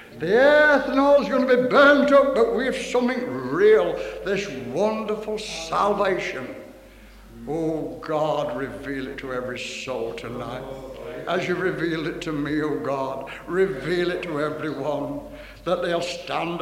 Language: English